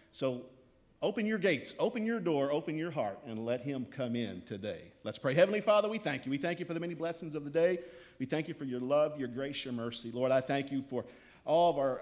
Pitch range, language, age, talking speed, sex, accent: 115-145 Hz, English, 50-69, 255 wpm, male, American